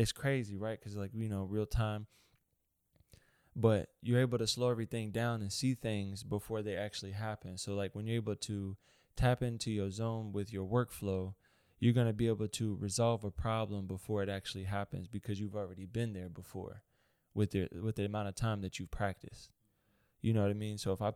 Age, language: 20-39, English